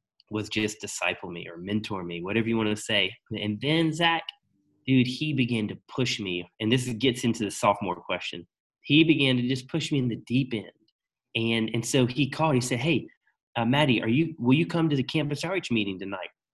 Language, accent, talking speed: English, American, 215 wpm